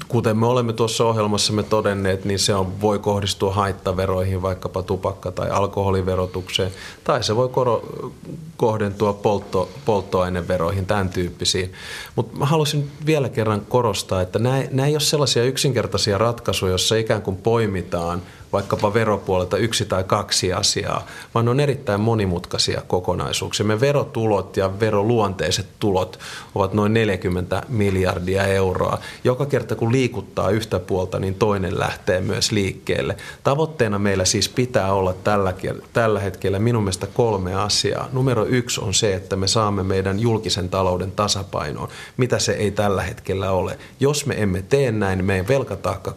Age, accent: 30-49, native